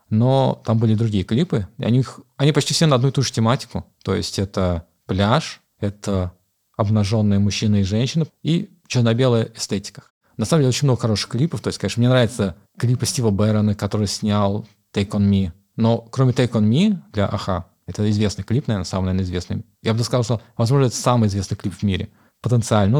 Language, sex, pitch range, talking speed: Russian, male, 100-120 Hz, 190 wpm